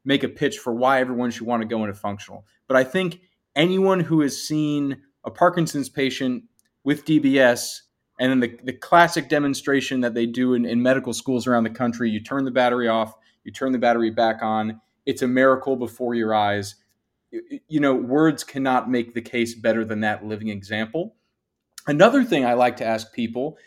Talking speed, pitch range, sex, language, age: 195 wpm, 115-145 Hz, male, English, 30-49